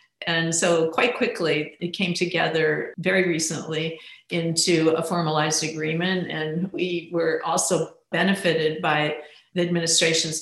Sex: female